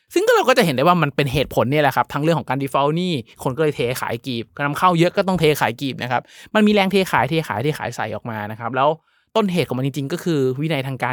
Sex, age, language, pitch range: male, 20-39, Thai, 125-160 Hz